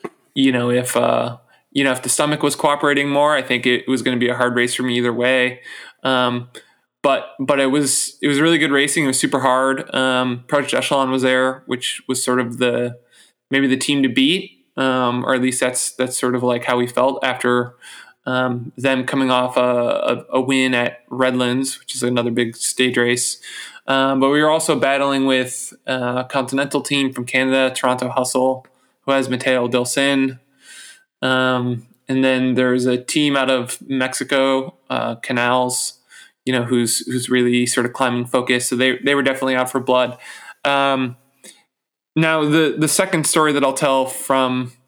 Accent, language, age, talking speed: American, English, 20-39, 185 wpm